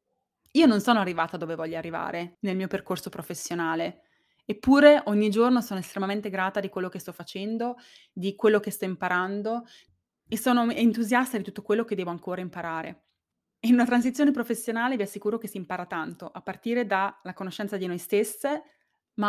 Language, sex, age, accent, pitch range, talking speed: Italian, female, 20-39, native, 180-225 Hz, 170 wpm